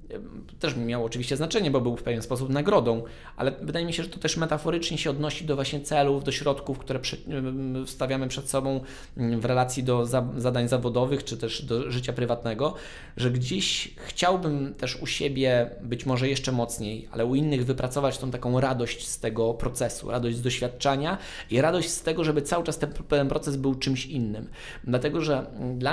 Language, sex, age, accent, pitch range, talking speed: English, male, 20-39, Polish, 125-145 Hz, 180 wpm